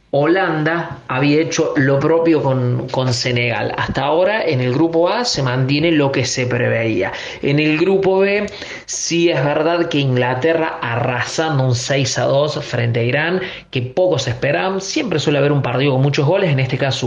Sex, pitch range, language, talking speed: male, 135-170 Hz, Spanish, 180 wpm